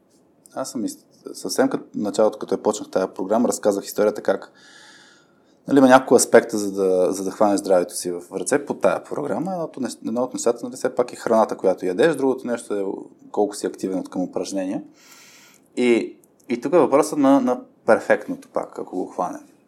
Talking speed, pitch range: 180 wpm, 105-145 Hz